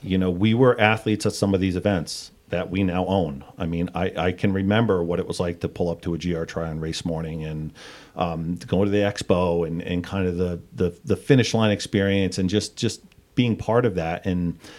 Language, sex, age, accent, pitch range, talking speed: English, male, 40-59, American, 85-100 Hz, 240 wpm